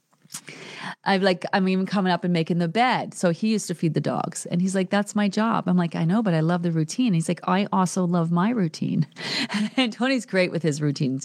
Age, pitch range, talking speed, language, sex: 30-49, 175-250 Hz, 250 wpm, English, female